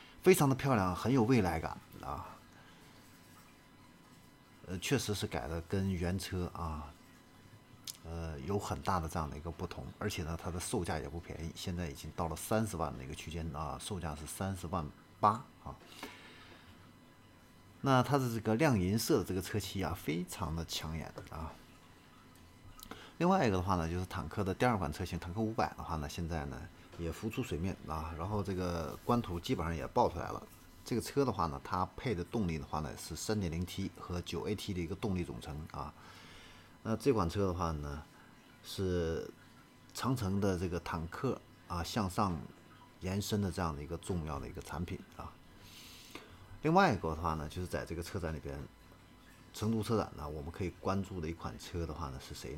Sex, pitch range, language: male, 80-105 Hz, Chinese